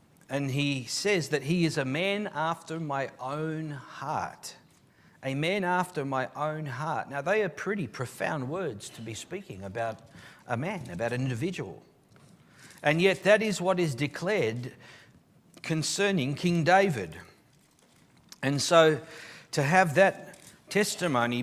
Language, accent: English, Australian